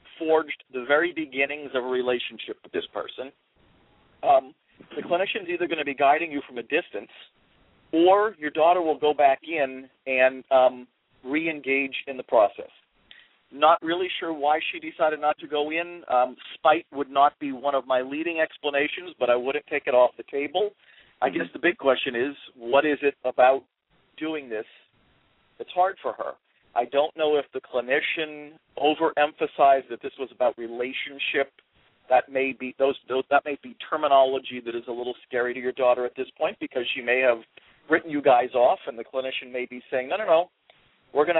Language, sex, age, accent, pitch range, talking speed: English, male, 50-69, American, 130-160 Hz, 185 wpm